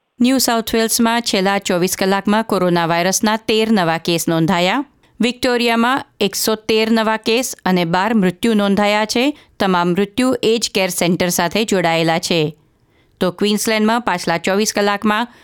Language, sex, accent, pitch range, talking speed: Gujarati, female, native, 180-235 Hz, 130 wpm